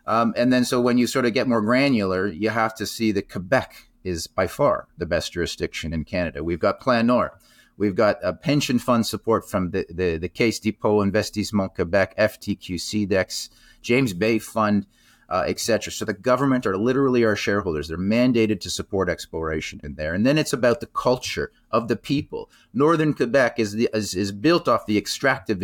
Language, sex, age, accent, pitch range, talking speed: English, male, 30-49, American, 100-125 Hz, 190 wpm